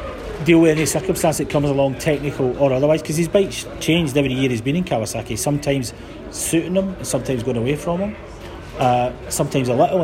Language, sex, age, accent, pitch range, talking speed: English, male, 40-59, British, 130-180 Hz, 190 wpm